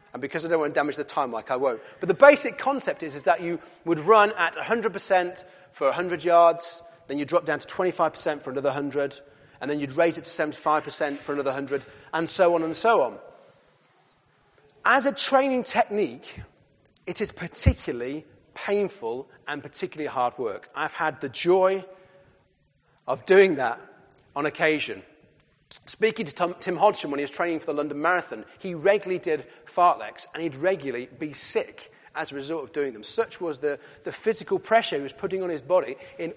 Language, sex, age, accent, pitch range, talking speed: English, male, 40-59, British, 155-220 Hz, 185 wpm